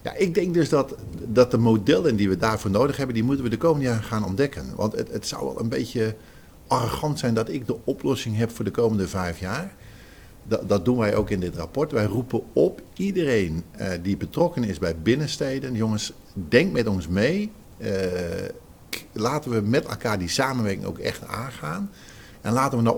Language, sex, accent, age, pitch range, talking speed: Dutch, male, Dutch, 50-69, 95-125 Hz, 195 wpm